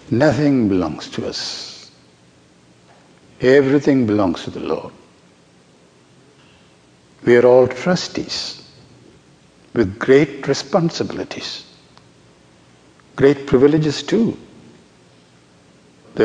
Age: 60-79